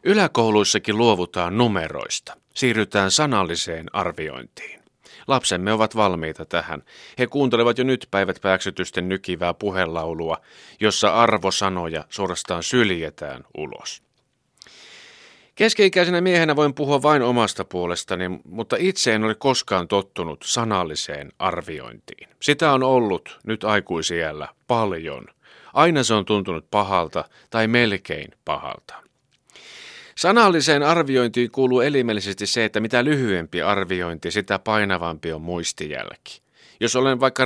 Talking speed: 105 wpm